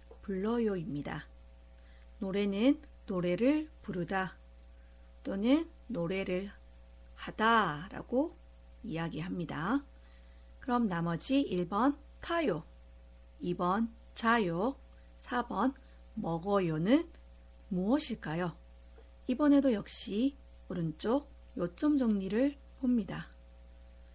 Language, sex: Korean, female